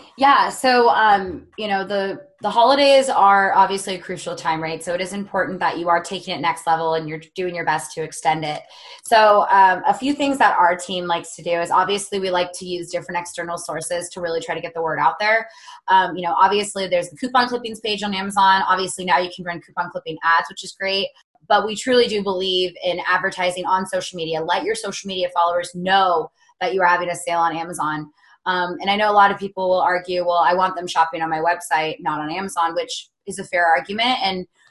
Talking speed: 235 wpm